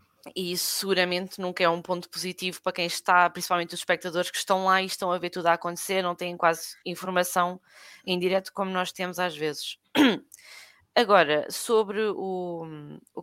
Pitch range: 175-205 Hz